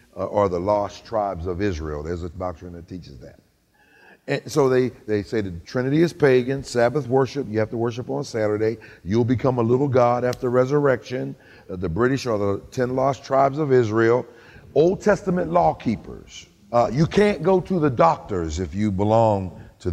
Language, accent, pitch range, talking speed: English, American, 100-145 Hz, 185 wpm